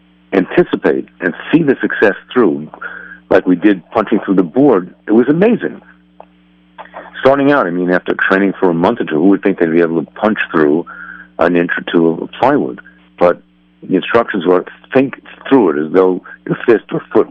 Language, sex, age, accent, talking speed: English, male, 60-79, American, 190 wpm